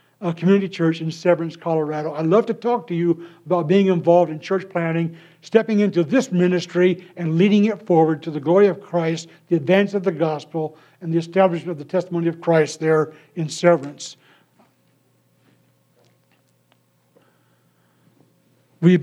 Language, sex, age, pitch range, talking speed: English, male, 60-79, 165-190 Hz, 150 wpm